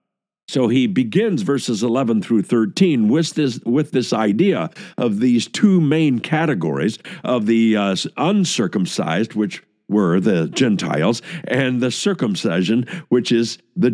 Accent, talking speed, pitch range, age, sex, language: American, 135 wpm, 100-150 Hz, 60-79, male, English